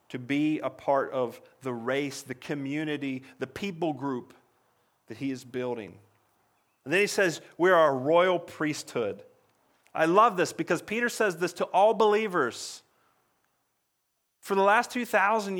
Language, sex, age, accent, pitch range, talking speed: English, male, 40-59, American, 150-190 Hz, 150 wpm